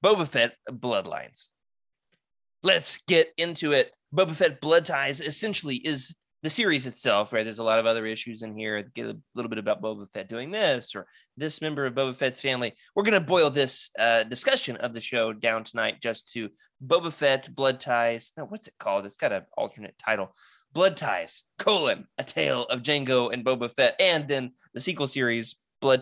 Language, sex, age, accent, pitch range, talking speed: English, male, 20-39, American, 115-170 Hz, 190 wpm